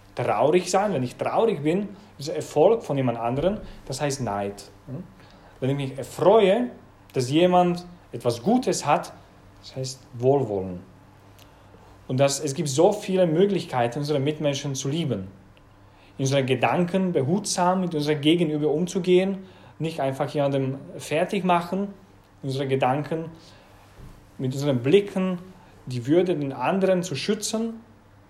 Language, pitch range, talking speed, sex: English, 115-155 Hz, 130 wpm, male